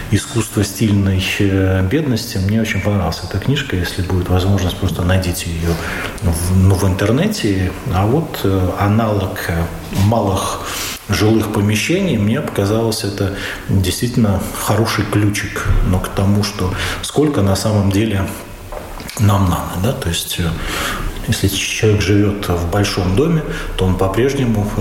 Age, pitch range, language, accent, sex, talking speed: 40-59, 90-110 Hz, Russian, native, male, 125 wpm